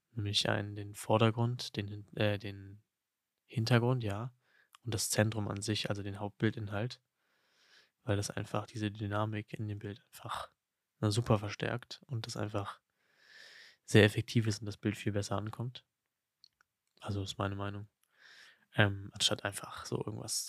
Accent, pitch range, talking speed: German, 100-110 Hz, 145 wpm